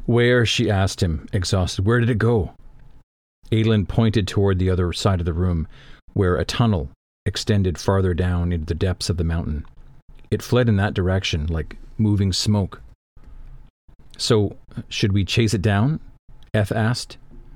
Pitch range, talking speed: 90-115 Hz, 155 wpm